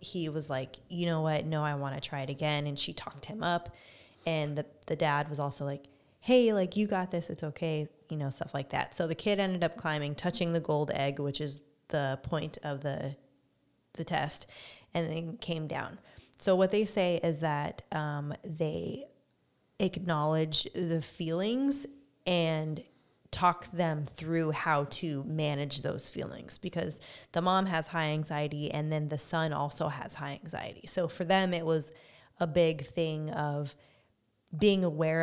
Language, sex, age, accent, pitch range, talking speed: English, female, 20-39, American, 145-170 Hz, 175 wpm